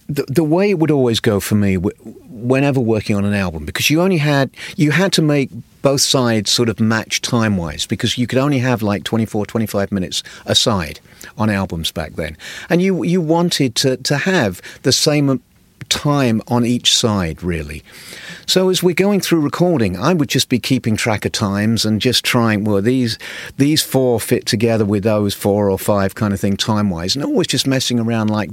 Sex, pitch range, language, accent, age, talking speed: male, 105-135 Hz, English, British, 50-69, 200 wpm